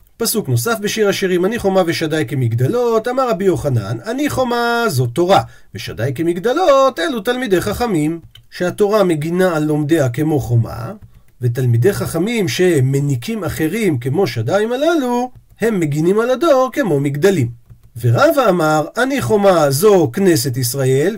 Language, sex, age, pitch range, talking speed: Hebrew, male, 40-59, 145-215 Hz, 130 wpm